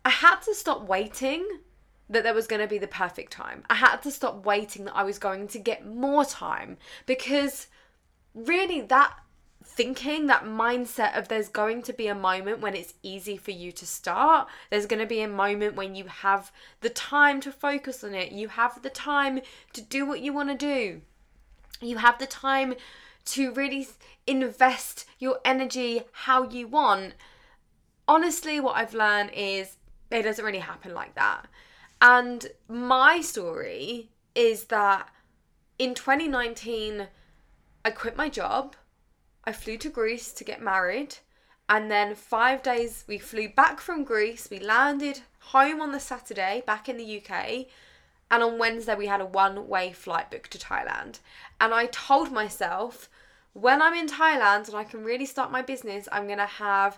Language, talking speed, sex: English, 165 wpm, female